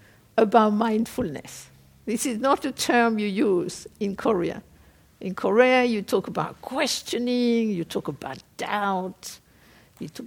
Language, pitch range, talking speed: English, 215-260 Hz, 135 wpm